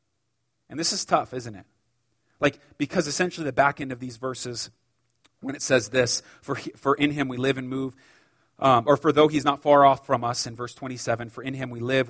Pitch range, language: 120-155 Hz, English